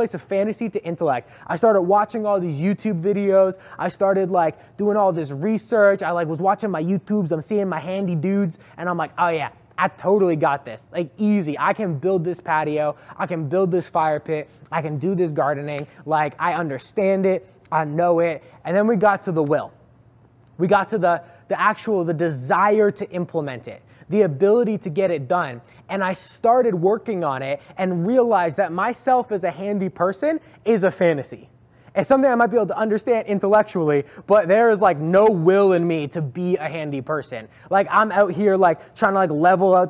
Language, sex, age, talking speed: English, male, 20-39, 205 wpm